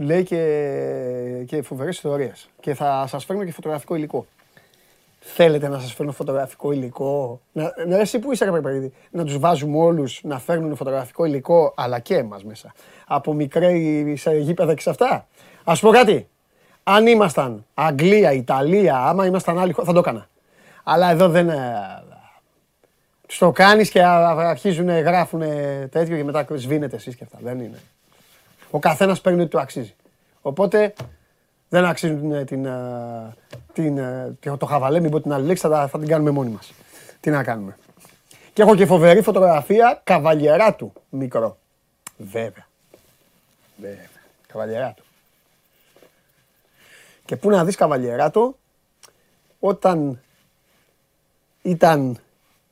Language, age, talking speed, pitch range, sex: Greek, 30-49, 105 wpm, 135-175 Hz, male